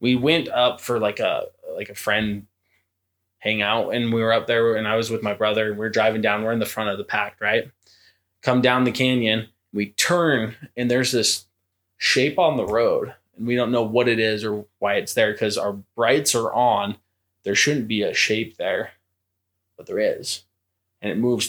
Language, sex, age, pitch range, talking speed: English, male, 20-39, 100-120 Hz, 210 wpm